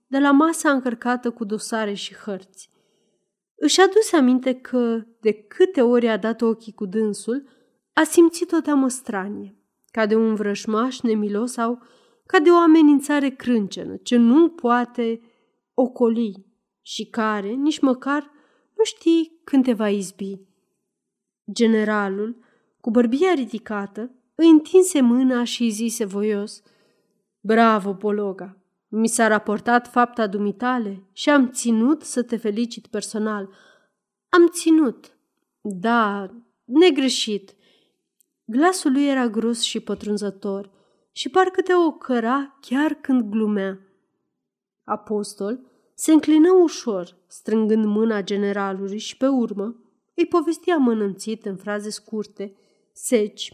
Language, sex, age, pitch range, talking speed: Romanian, female, 30-49, 210-270 Hz, 120 wpm